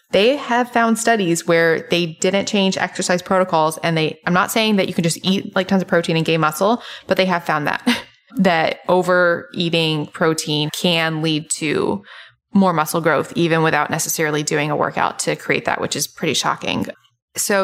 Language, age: English, 20-39